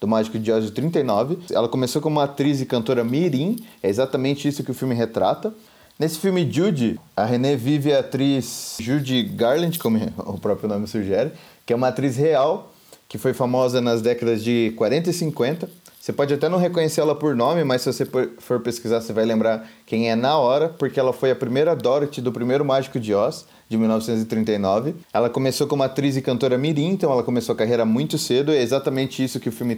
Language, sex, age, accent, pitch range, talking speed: Portuguese, male, 30-49, Brazilian, 115-145 Hz, 205 wpm